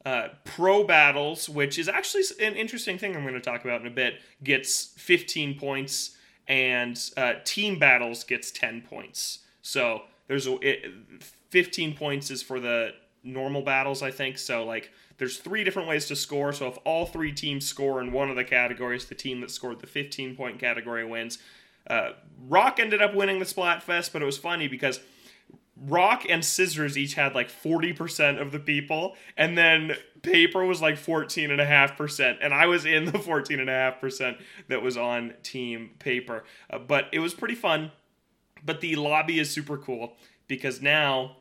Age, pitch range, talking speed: 30-49, 130-165 Hz, 175 wpm